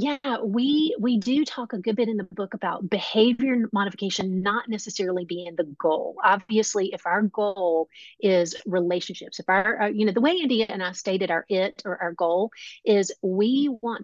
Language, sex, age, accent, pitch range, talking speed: English, female, 30-49, American, 185-225 Hz, 190 wpm